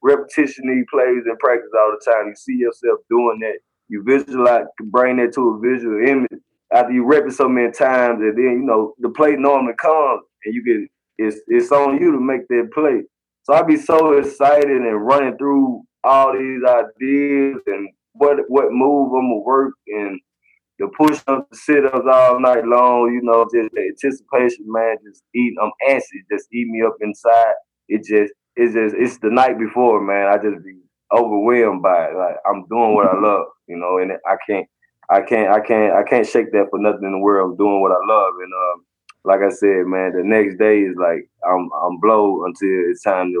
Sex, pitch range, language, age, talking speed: male, 105-135 Hz, English, 20-39, 205 wpm